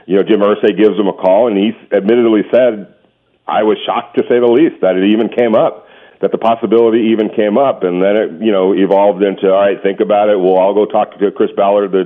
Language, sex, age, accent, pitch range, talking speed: English, male, 50-69, American, 95-110 Hz, 250 wpm